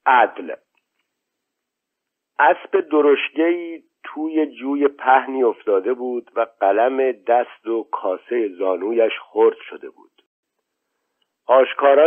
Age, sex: 50-69, male